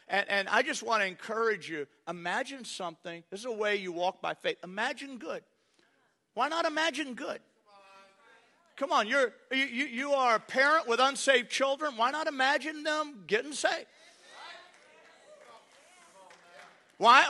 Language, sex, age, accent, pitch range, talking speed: English, male, 40-59, American, 235-305 Hz, 140 wpm